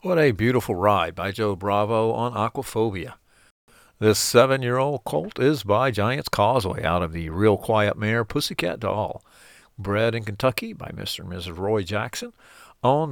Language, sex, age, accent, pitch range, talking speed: English, male, 50-69, American, 100-120 Hz, 155 wpm